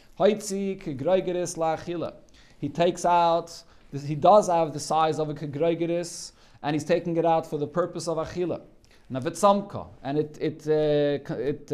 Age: 40-59